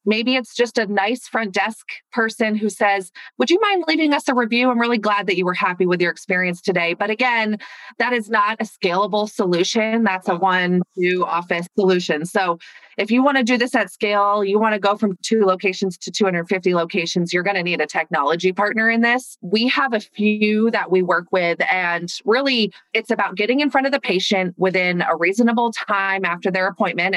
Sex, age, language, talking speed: female, 30-49, English, 210 wpm